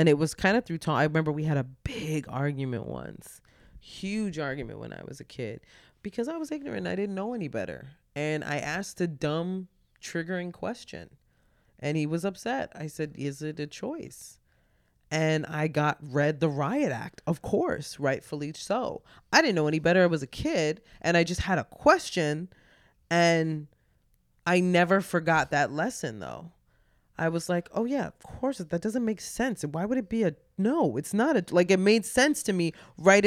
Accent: American